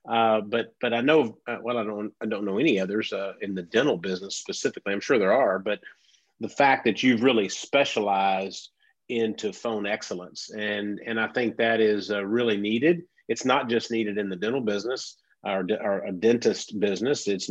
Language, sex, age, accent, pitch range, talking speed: English, male, 40-59, American, 105-135 Hz, 195 wpm